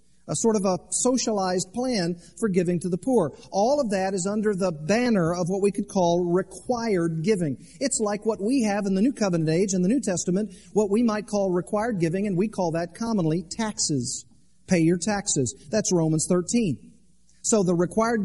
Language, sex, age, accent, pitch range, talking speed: English, male, 40-59, American, 180-225 Hz, 195 wpm